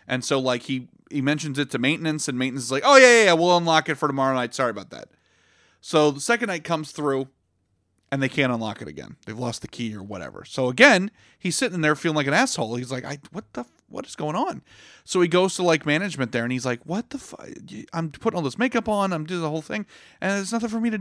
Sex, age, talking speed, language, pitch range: male, 30-49, 260 wpm, English, 125-160 Hz